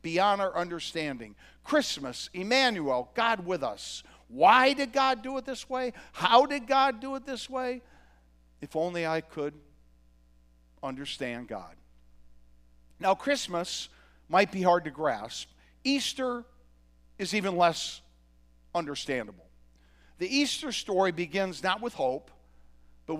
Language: English